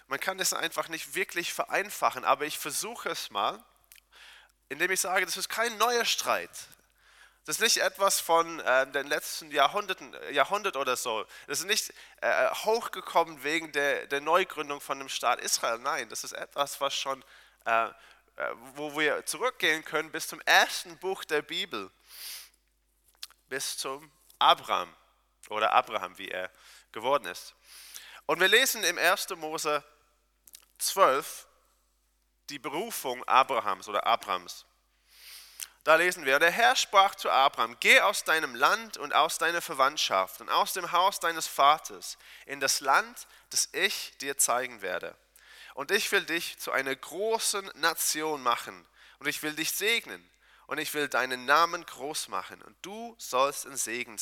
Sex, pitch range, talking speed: male, 135-185 Hz, 155 wpm